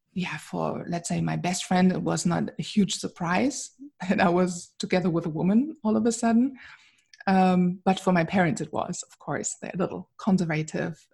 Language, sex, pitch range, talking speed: English, female, 175-220 Hz, 200 wpm